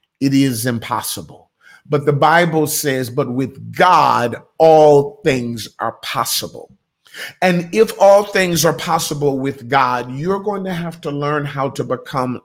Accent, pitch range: American, 140-185 Hz